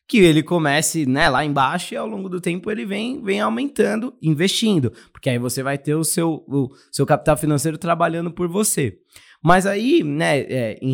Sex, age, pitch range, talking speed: male, 20-39, 130-165 Hz, 180 wpm